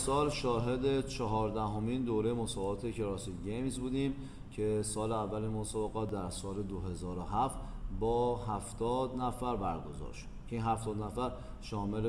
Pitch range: 105-125 Hz